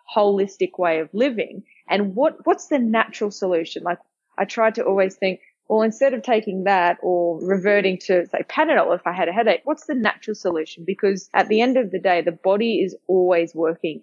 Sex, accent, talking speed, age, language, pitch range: female, Australian, 200 wpm, 20-39, English, 175-225 Hz